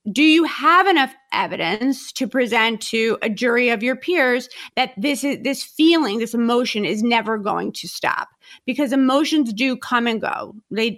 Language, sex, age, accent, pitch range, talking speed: English, female, 30-49, American, 215-255 Hz, 175 wpm